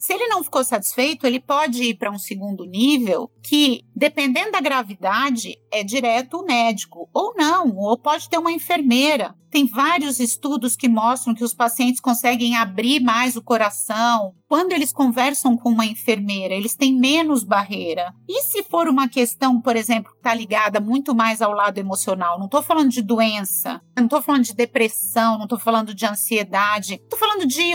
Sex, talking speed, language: female, 180 wpm, Portuguese